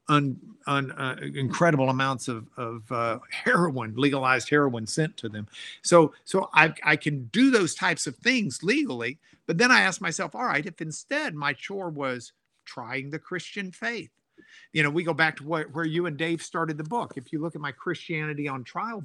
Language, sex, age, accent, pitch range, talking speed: English, male, 50-69, American, 135-175 Hz, 200 wpm